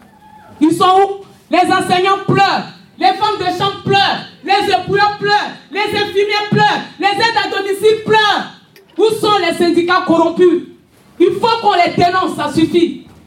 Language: French